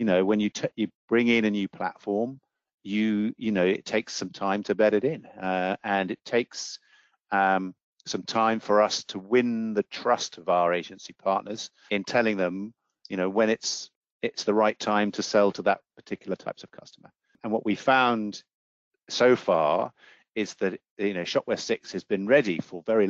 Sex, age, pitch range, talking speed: male, 50-69, 90-110 Hz, 195 wpm